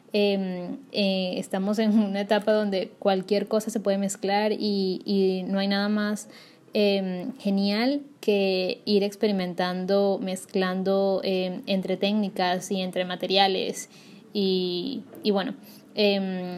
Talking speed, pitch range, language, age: 125 wpm, 195-215 Hz, Spanish, 10-29